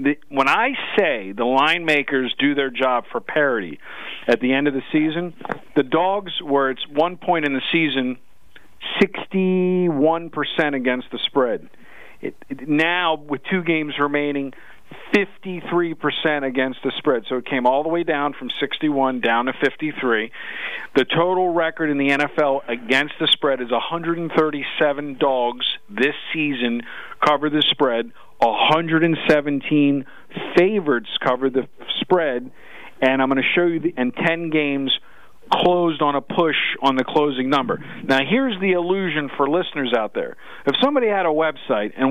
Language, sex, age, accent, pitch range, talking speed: English, male, 50-69, American, 130-160 Hz, 160 wpm